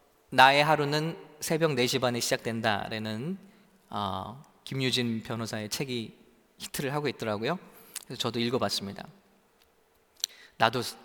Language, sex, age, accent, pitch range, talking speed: English, male, 20-39, Korean, 120-175 Hz, 90 wpm